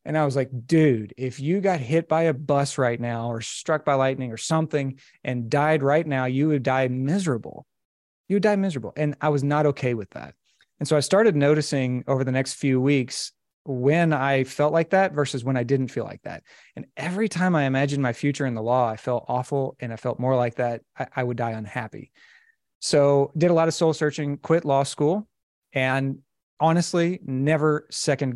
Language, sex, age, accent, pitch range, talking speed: English, male, 30-49, American, 125-155 Hz, 210 wpm